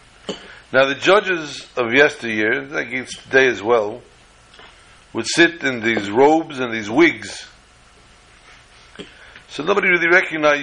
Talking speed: 125 wpm